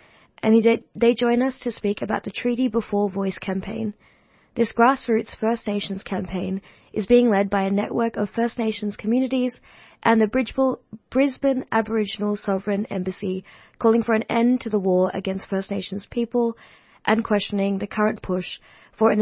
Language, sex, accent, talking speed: English, female, Australian, 160 wpm